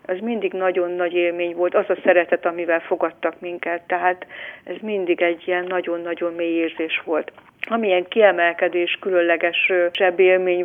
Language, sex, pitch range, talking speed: Hungarian, female, 170-190 Hz, 145 wpm